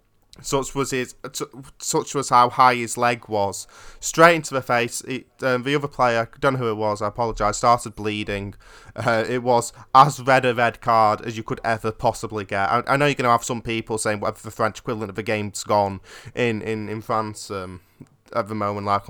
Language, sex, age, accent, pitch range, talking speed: English, male, 20-39, British, 110-125 Hz, 215 wpm